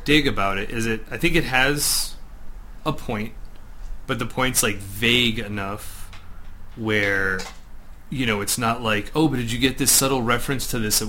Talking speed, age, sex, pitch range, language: 180 wpm, 30-49, male, 100-120 Hz, English